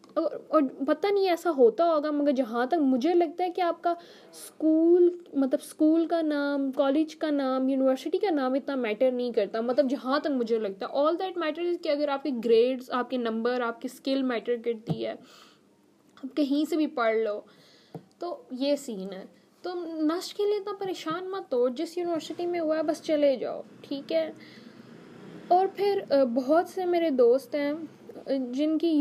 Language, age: Urdu, 10-29